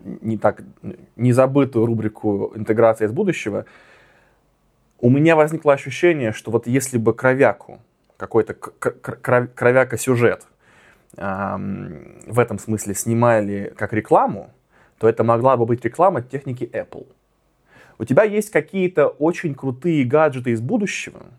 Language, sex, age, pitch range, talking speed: Russian, male, 20-39, 115-150 Hz, 120 wpm